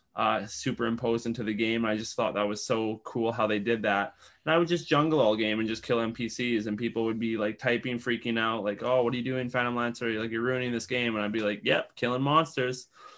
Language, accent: English, American